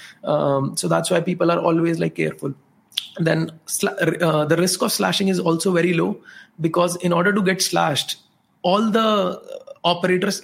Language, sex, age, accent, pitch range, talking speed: English, male, 30-49, Indian, 160-185 Hz, 165 wpm